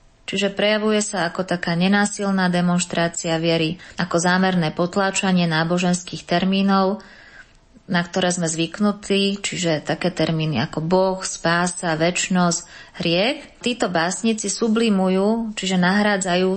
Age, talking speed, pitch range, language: 20-39, 110 wpm, 180-220 Hz, Slovak